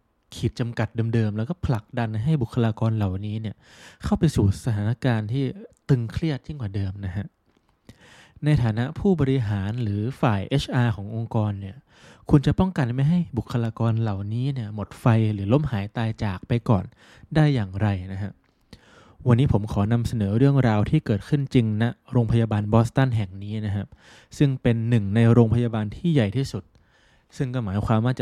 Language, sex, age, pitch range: Thai, male, 20-39, 105-130 Hz